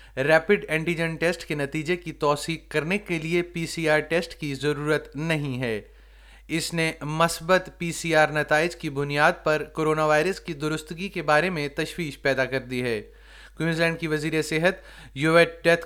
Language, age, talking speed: Urdu, 30-49, 175 wpm